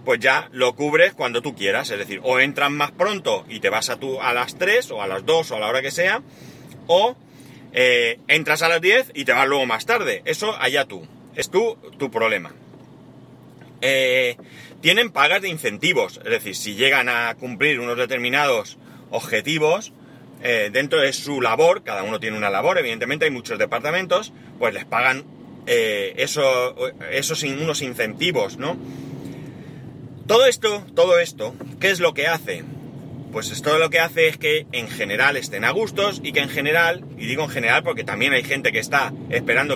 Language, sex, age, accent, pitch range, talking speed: Spanish, male, 30-49, Spanish, 135-180 Hz, 185 wpm